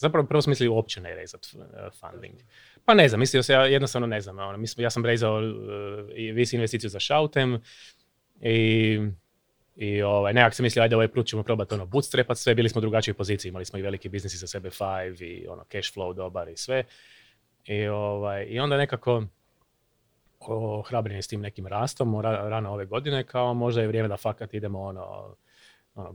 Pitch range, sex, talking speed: 100-125 Hz, male, 195 wpm